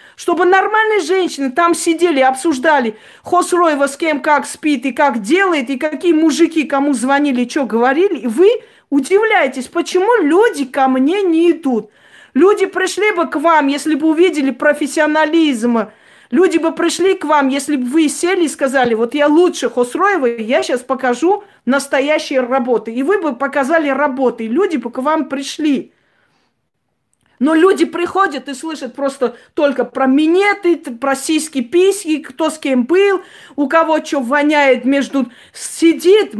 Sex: female